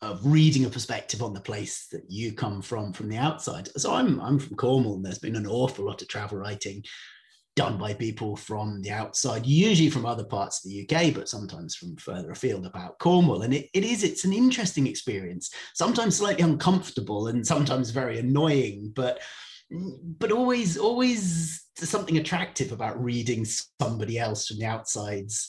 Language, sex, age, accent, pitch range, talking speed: English, male, 30-49, British, 110-155 Hz, 180 wpm